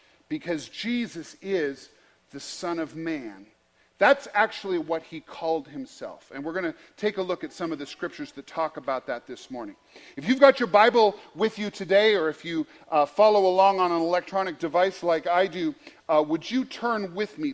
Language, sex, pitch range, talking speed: English, male, 170-235 Hz, 195 wpm